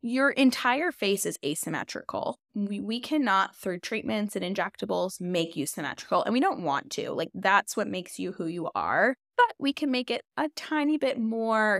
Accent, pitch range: American, 180-220 Hz